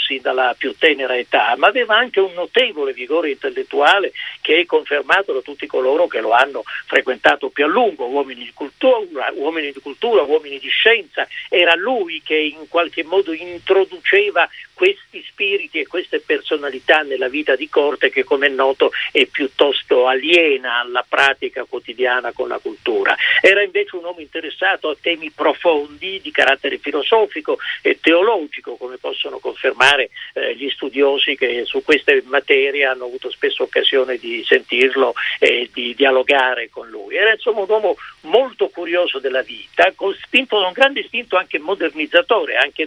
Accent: native